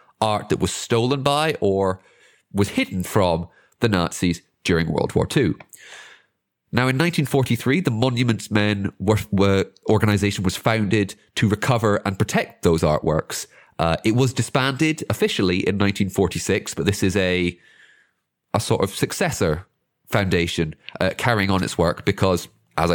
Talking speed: 145 wpm